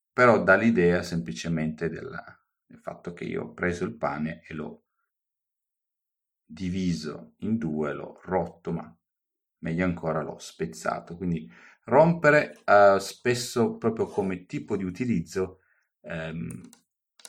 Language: Italian